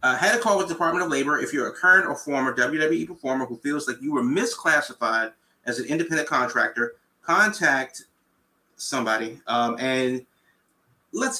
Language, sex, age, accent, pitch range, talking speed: English, male, 30-49, American, 130-175 Hz, 170 wpm